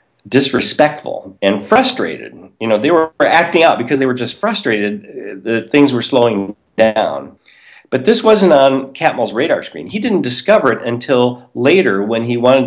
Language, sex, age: English, male, 40-59